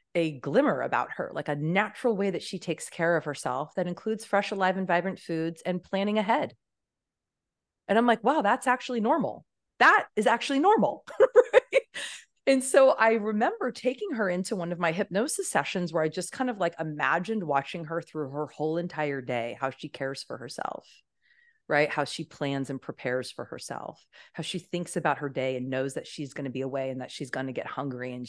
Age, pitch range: 30-49, 145-205 Hz